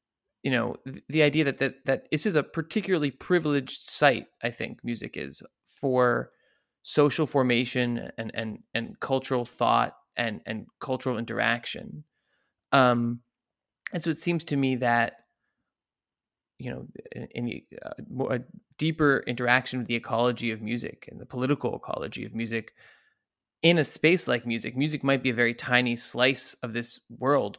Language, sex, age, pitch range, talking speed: English, male, 20-39, 120-150 Hz, 160 wpm